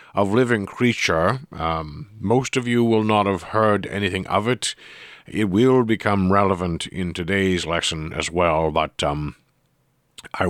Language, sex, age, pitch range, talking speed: English, male, 50-69, 85-110 Hz, 150 wpm